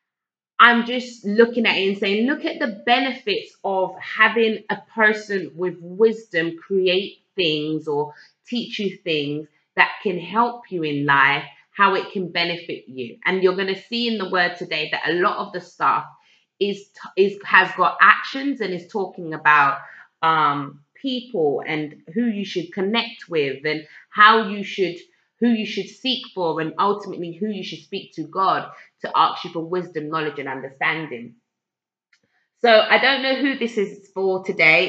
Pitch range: 165-215 Hz